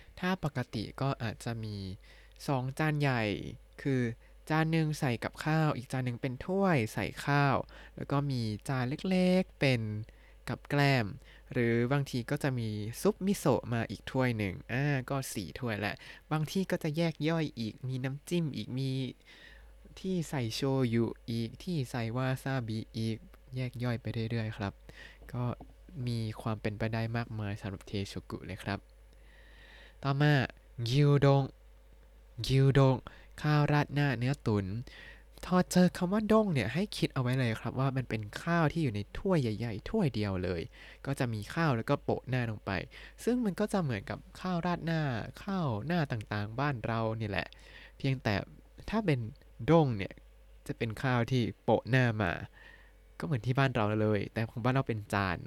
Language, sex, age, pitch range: Thai, male, 20-39, 110-145 Hz